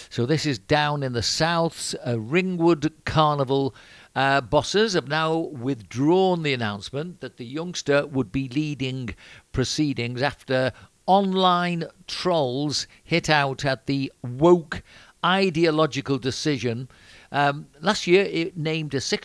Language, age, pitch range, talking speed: English, 50-69, 130-165 Hz, 125 wpm